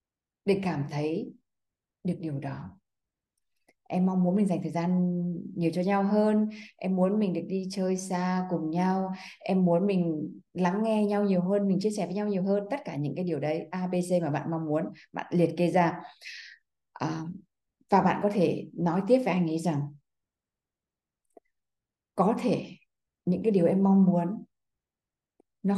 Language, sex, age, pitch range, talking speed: Vietnamese, female, 20-39, 165-195 Hz, 180 wpm